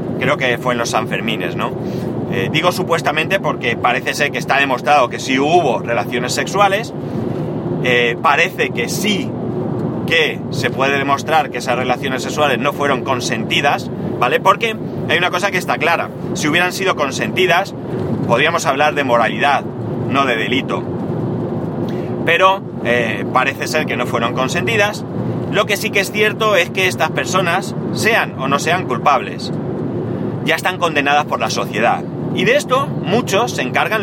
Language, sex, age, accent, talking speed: Spanish, male, 30-49, Spanish, 160 wpm